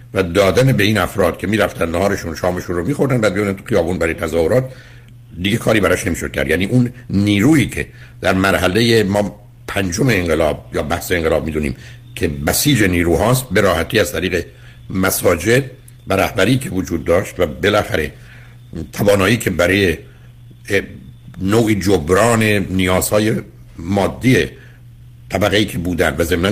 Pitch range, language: 90-120 Hz, Persian